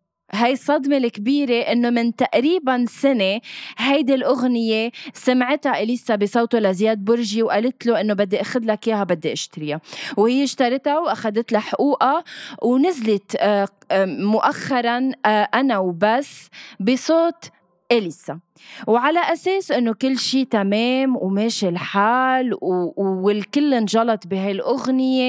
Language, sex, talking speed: Arabic, female, 105 wpm